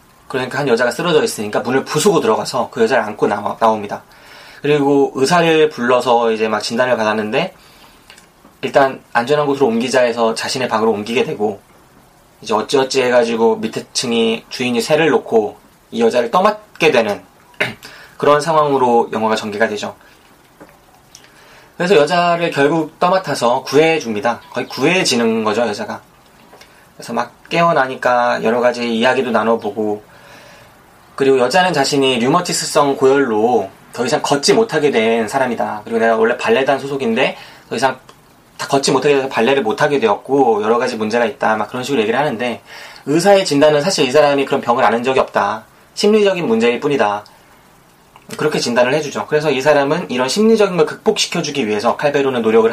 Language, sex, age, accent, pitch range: Korean, male, 20-39, native, 115-165 Hz